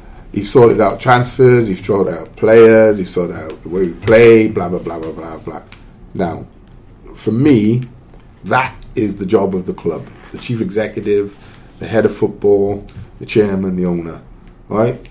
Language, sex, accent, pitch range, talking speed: English, male, British, 95-125 Hz, 170 wpm